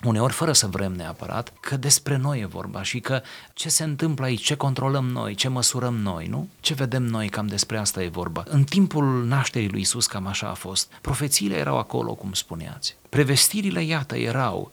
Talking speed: 195 wpm